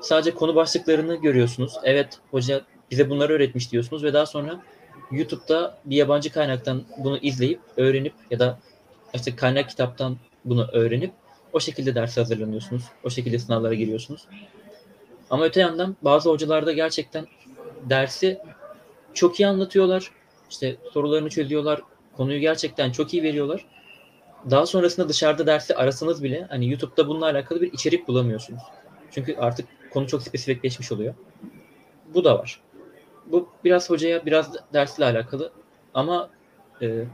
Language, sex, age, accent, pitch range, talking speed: Turkish, male, 30-49, native, 125-160 Hz, 135 wpm